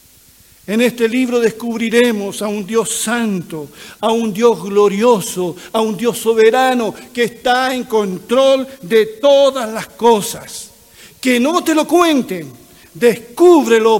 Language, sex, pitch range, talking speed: Spanish, male, 210-255 Hz, 130 wpm